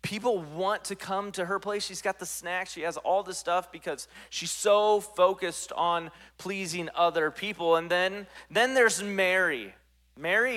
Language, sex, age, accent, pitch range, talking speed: English, male, 30-49, American, 155-215 Hz, 170 wpm